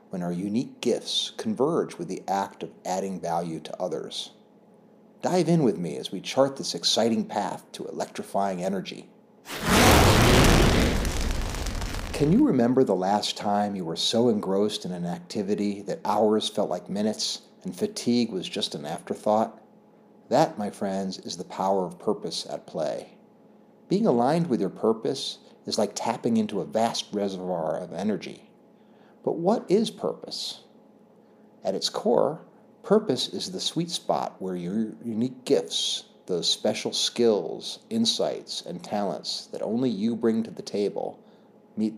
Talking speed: 150 wpm